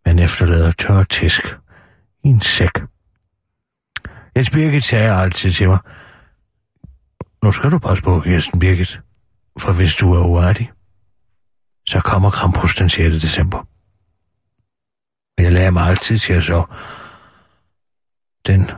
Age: 60-79